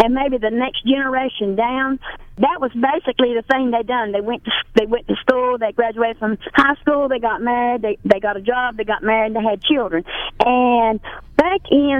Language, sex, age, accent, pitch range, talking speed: English, female, 50-69, American, 230-285 Hz, 210 wpm